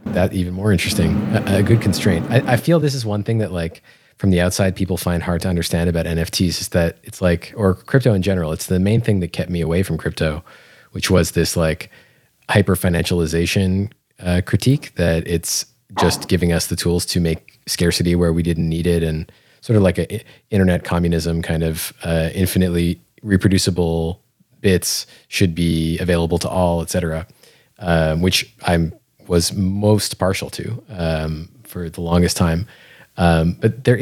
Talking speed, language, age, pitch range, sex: 180 wpm, English, 30-49, 85-105 Hz, male